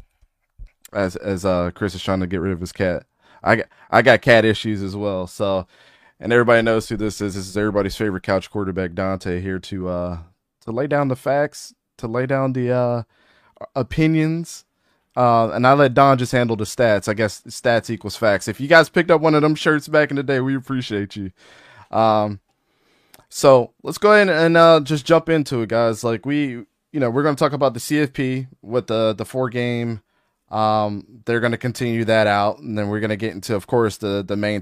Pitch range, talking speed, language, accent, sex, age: 95-130 Hz, 215 wpm, English, American, male, 20-39